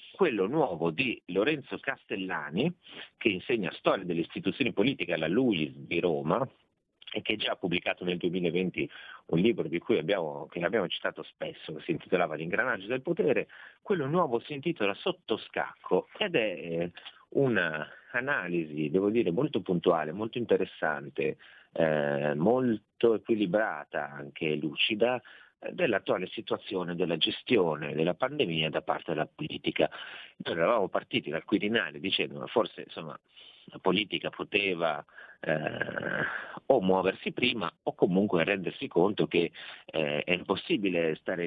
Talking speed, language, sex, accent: 130 wpm, Italian, male, native